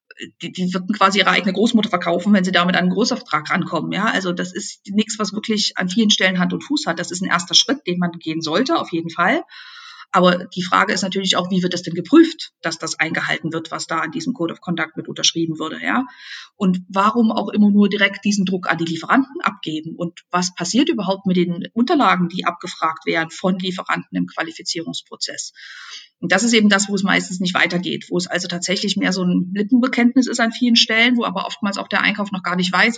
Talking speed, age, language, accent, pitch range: 220 wpm, 50-69, German, German, 170-215 Hz